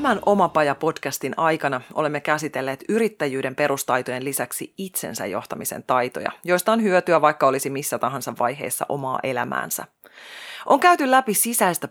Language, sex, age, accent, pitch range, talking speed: Finnish, female, 30-49, native, 135-180 Hz, 125 wpm